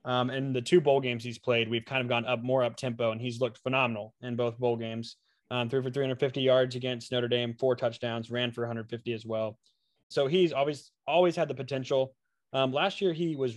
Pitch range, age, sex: 115-135 Hz, 20-39, male